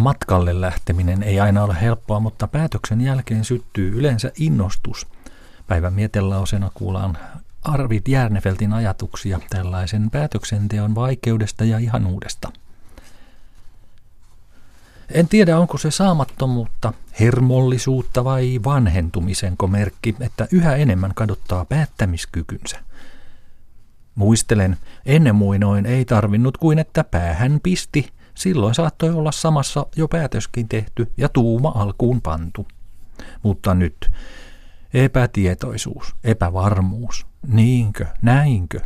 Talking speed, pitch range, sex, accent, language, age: 100 wpm, 95-125 Hz, male, native, Finnish, 40-59